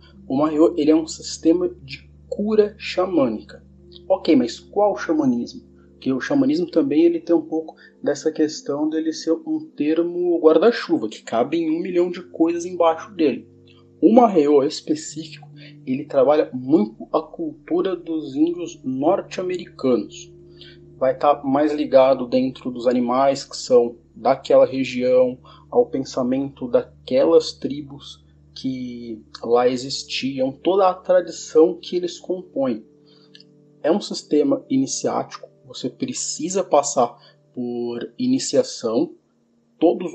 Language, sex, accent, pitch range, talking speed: English, male, Brazilian, 130-175 Hz, 125 wpm